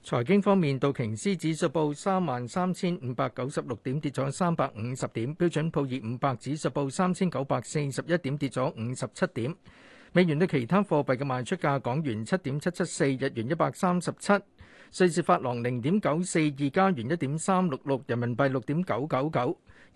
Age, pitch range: 50-69, 130-180 Hz